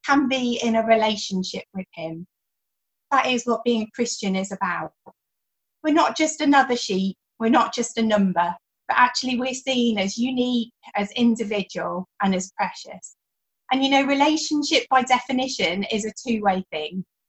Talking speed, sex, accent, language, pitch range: 165 wpm, female, British, English, 195-260 Hz